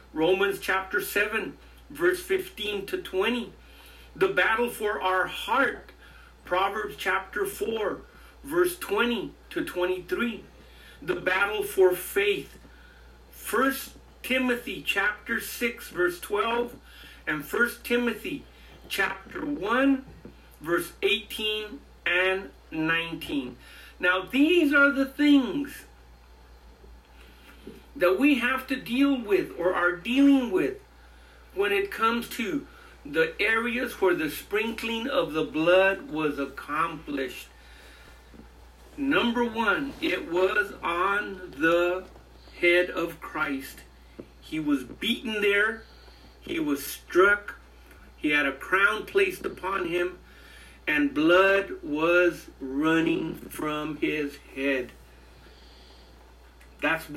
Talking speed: 105 wpm